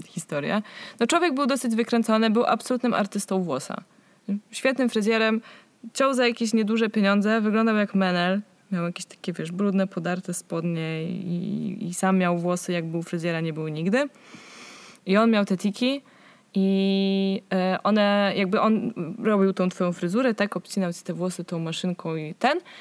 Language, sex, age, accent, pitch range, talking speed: Polish, female, 20-39, native, 185-230 Hz, 160 wpm